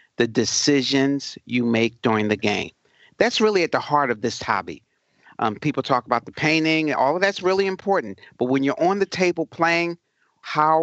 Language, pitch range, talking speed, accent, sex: English, 120-150 Hz, 190 wpm, American, male